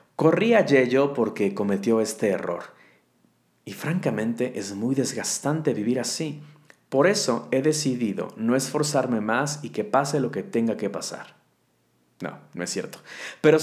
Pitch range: 120-170 Hz